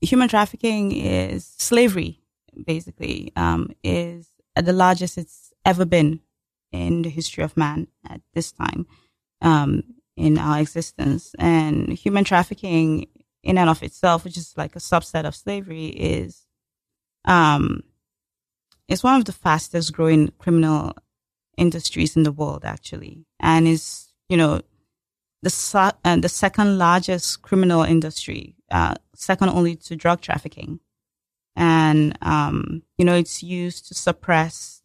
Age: 20-39